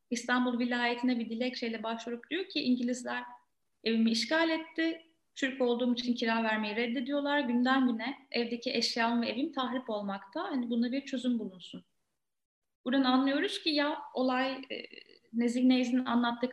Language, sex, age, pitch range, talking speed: Turkish, female, 30-49, 220-270 Hz, 140 wpm